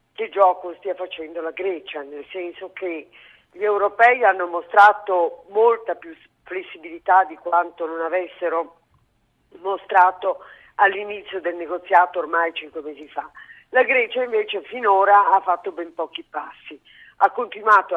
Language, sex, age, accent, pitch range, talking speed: Italian, female, 40-59, native, 170-215 Hz, 130 wpm